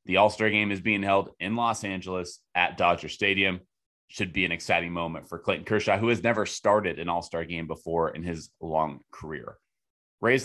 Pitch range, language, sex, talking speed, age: 90-115 Hz, English, male, 190 wpm, 30-49